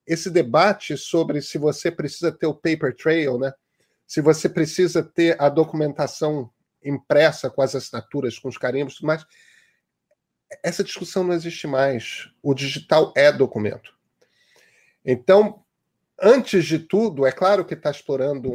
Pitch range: 135-170 Hz